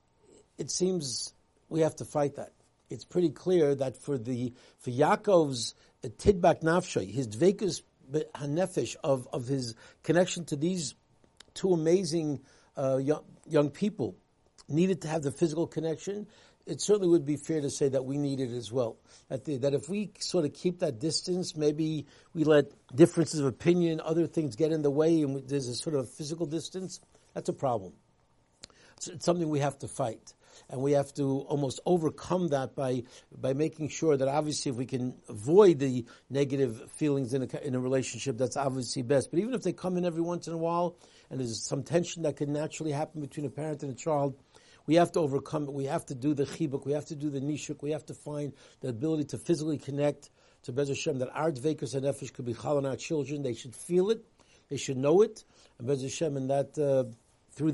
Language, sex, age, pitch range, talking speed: English, male, 60-79, 135-160 Hz, 205 wpm